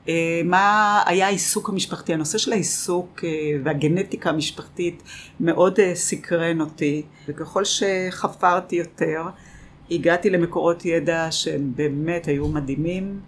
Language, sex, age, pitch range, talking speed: Hebrew, female, 50-69, 150-175 Hz, 100 wpm